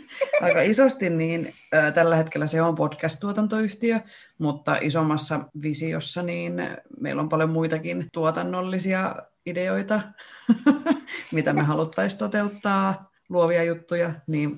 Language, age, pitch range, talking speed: Finnish, 30-49, 145-180 Hz, 110 wpm